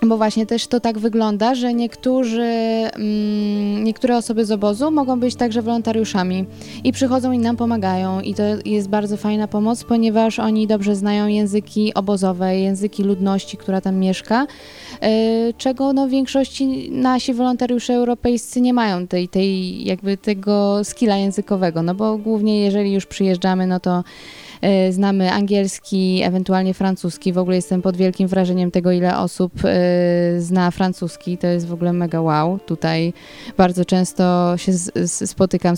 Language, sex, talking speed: Polish, female, 145 wpm